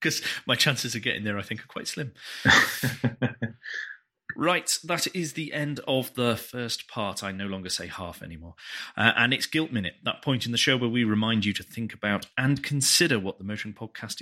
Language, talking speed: English, 205 wpm